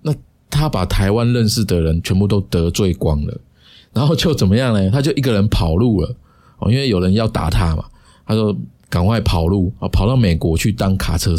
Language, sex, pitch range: Chinese, male, 90-125 Hz